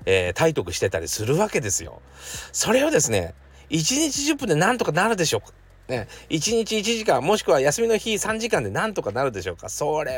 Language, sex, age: Japanese, male, 40-59